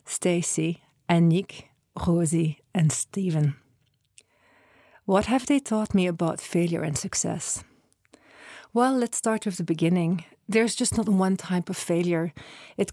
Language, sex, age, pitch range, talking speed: English, female, 40-59, 170-210 Hz, 130 wpm